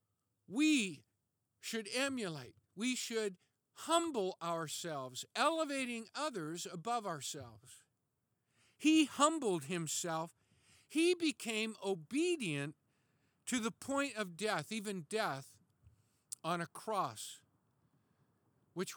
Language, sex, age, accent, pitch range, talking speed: English, male, 50-69, American, 130-220 Hz, 90 wpm